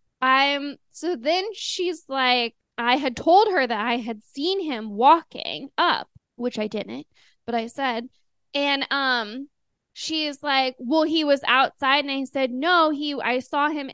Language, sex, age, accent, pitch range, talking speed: English, female, 20-39, American, 240-300 Hz, 165 wpm